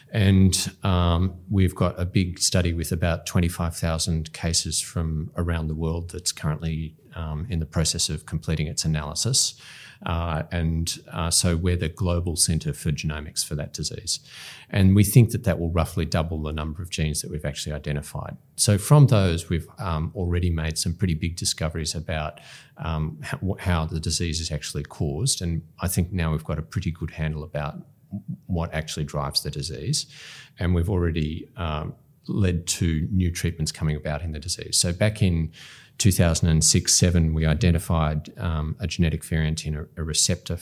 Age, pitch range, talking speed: 30-49, 80-95 Hz, 175 wpm